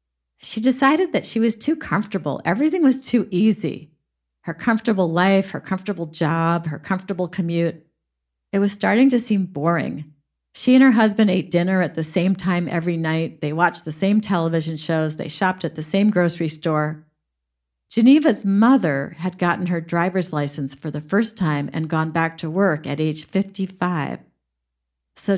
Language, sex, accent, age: English, female, American, 50-69